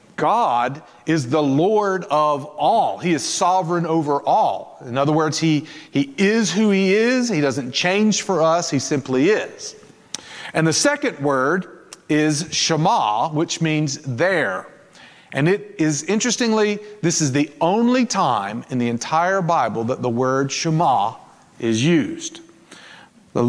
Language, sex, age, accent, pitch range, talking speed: English, male, 40-59, American, 140-205 Hz, 145 wpm